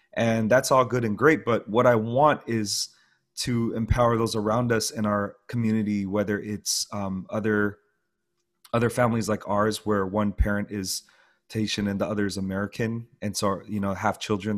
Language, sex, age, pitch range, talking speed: English, male, 30-49, 105-120 Hz, 175 wpm